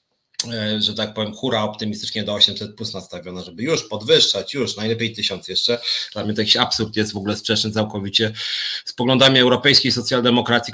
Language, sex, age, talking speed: Polish, male, 30-49, 170 wpm